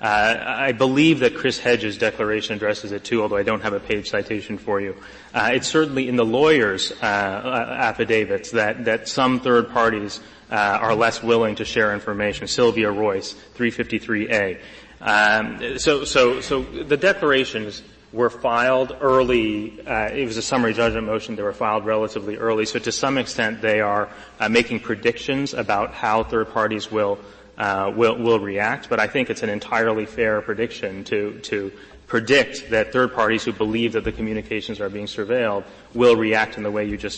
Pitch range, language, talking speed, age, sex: 105-120 Hz, English, 180 wpm, 30-49, male